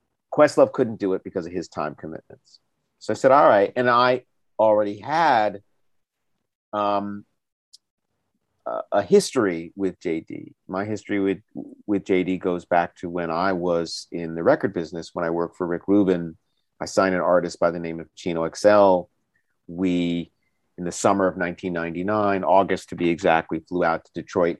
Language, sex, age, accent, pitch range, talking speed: English, male, 50-69, American, 85-100 Hz, 170 wpm